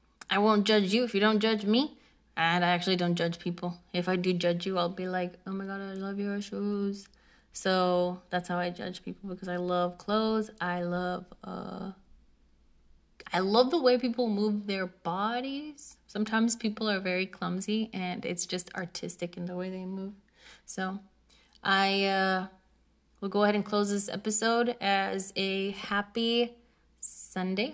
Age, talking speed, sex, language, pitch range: 20-39, 170 wpm, female, English, 185-215 Hz